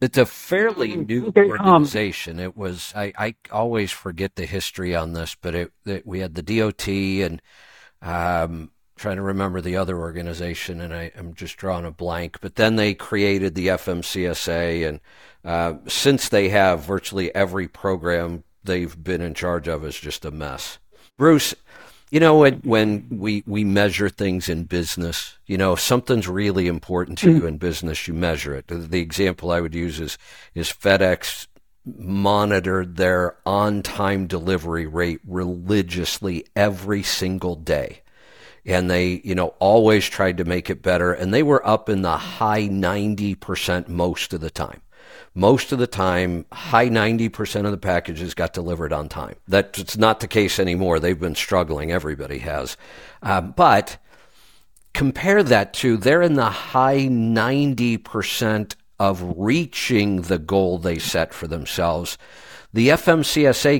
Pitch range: 90-110 Hz